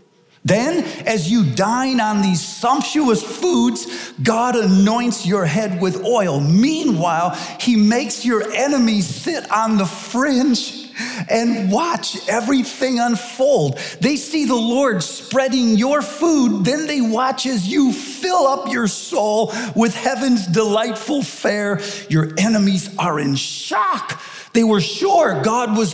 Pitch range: 170-250 Hz